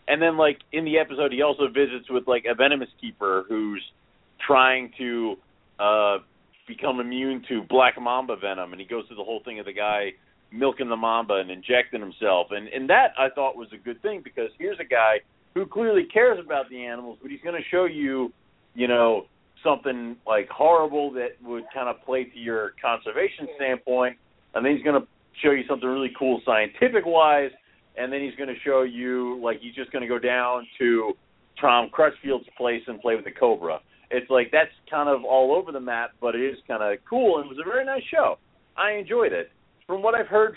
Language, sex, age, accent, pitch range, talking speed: English, male, 40-59, American, 120-155 Hz, 210 wpm